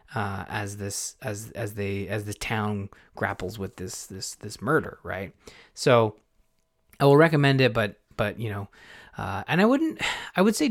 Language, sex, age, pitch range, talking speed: English, male, 20-39, 110-150 Hz, 180 wpm